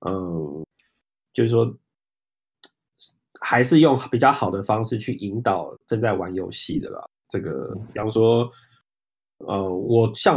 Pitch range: 100-120 Hz